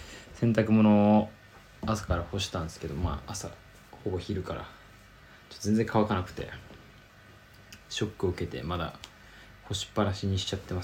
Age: 20-39